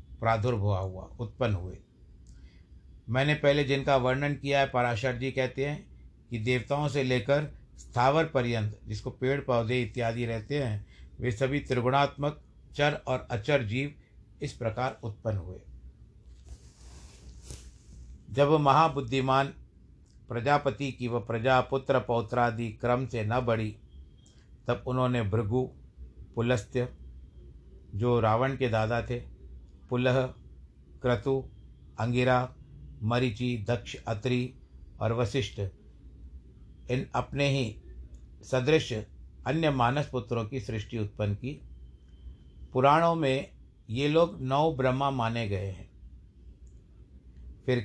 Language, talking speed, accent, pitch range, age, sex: Hindi, 110 wpm, native, 80-130 Hz, 60-79, male